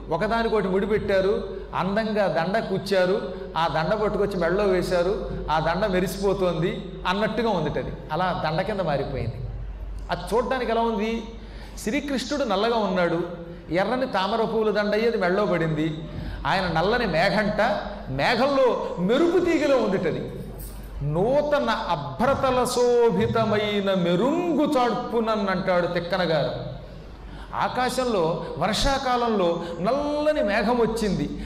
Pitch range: 175-235 Hz